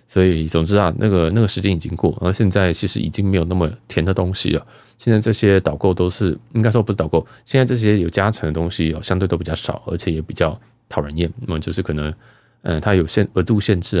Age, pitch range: 20-39, 85-115 Hz